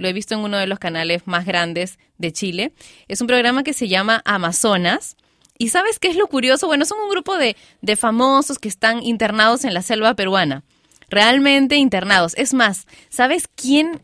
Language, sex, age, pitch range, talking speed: Spanish, female, 20-39, 190-255 Hz, 190 wpm